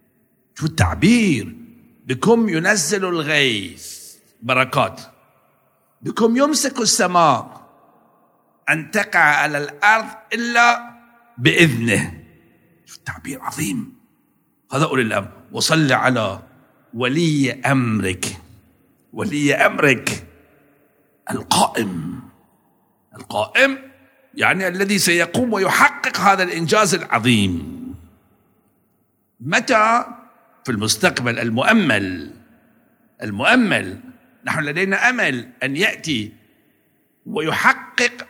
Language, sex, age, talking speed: Arabic, male, 60-79, 75 wpm